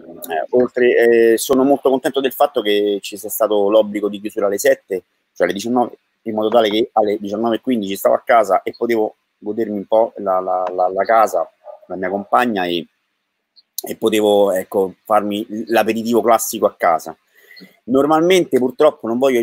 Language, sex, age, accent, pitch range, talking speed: Italian, male, 30-49, native, 105-125 Hz, 170 wpm